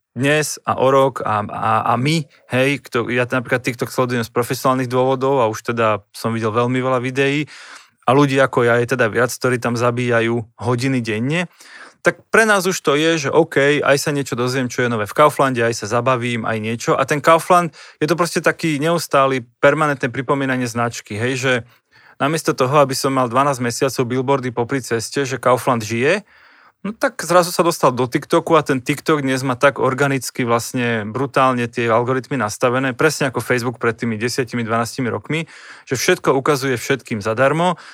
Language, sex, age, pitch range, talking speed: Slovak, male, 20-39, 120-145 Hz, 185 wpm